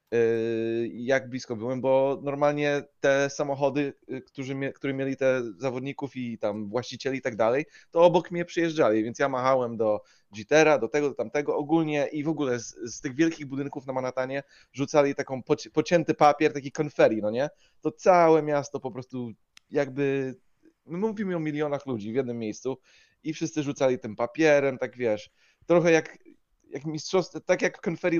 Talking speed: 165 wpm